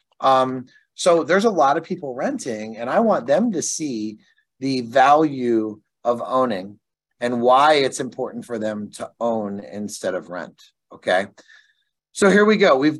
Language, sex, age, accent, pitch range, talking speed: English, male, 30-49, American, 115-145 Hz, 160 wpm